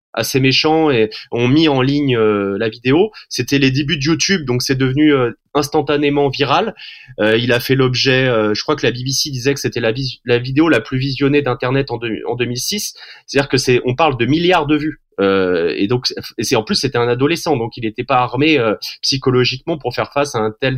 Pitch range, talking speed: 125-155 Hz, 230 wpm